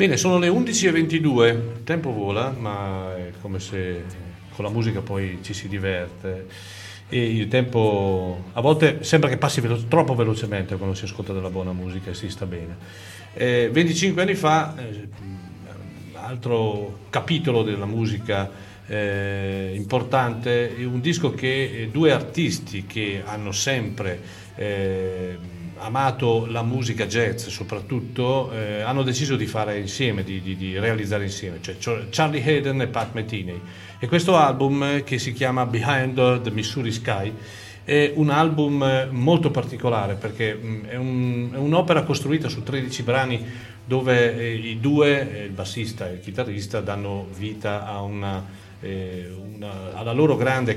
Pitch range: 100-130 Hz